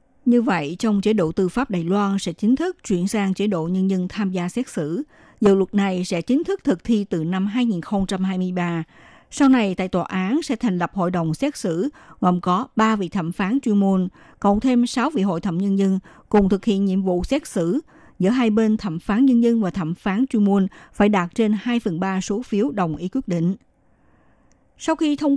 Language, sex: Vietnamese, female